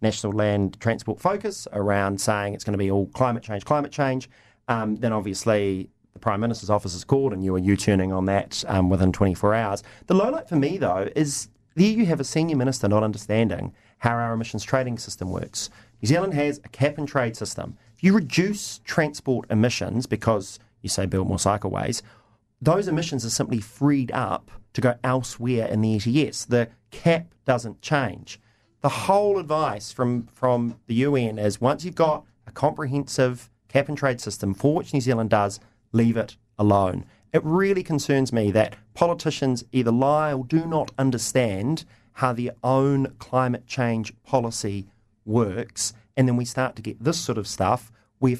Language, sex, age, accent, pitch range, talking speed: English, male, 30-49, Australian, 105-135 Hz, 175 wpm